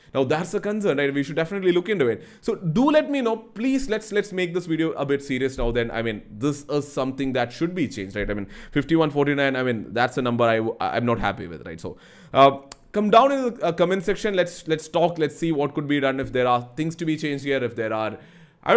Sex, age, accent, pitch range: male, 20-39, Indian, 120-175 Hz